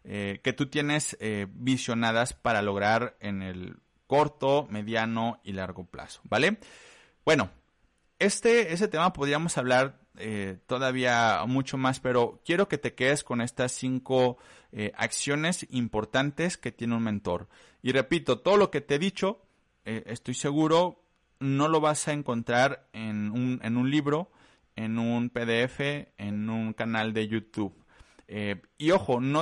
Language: Spanish